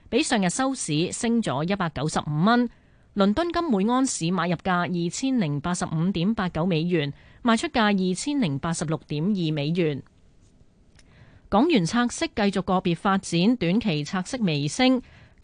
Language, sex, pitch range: Chinese, female, 165-230 Hz